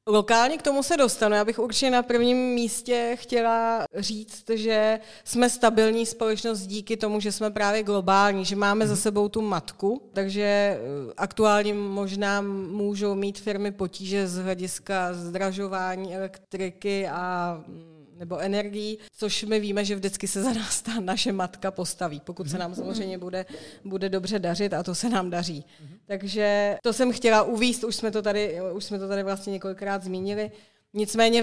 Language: Czech